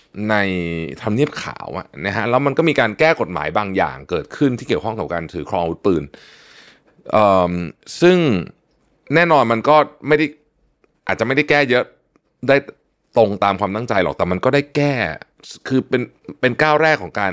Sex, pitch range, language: male, 90-135 Hz, Thai